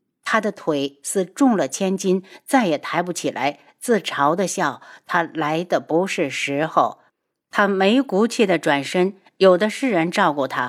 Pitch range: 160-225 Hz